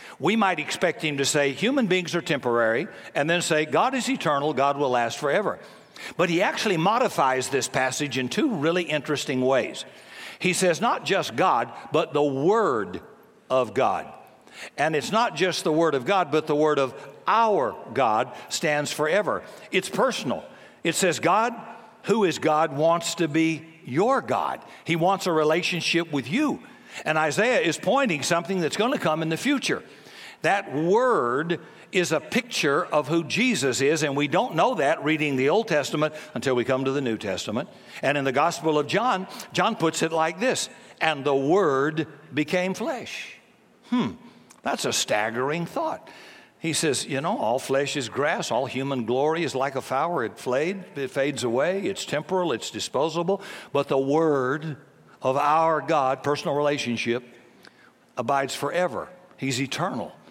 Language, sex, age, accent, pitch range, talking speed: English, male, 60-79, American, 140-180 Hz, 170 wpm